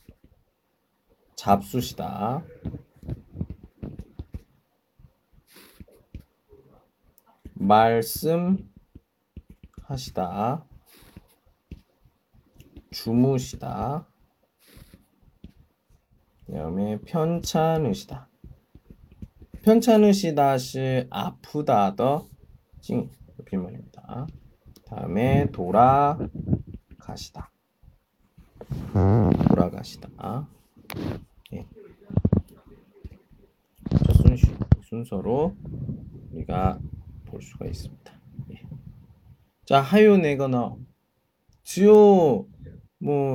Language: Chinese